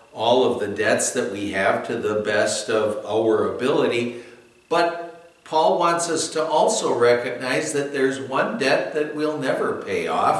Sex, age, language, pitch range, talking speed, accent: male, 60-79, English, 110-145 Hz, 165 wpm, American